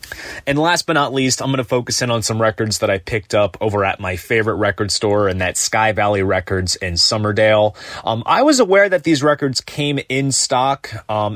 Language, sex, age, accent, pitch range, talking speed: English, male, 30-49, American, 105-130 Hz, 215 wpm